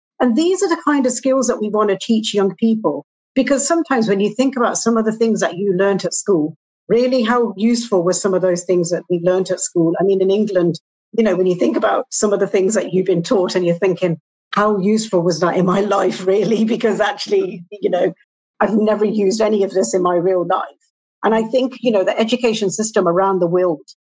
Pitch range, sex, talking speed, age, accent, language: 180-215 Hz, female, 240 wpm, 50-69, British, English